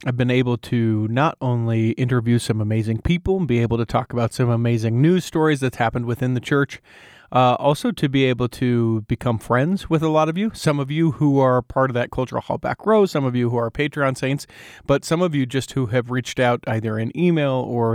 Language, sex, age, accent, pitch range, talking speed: English, male, 30-49, American, 120-140 Hz, 230 wpm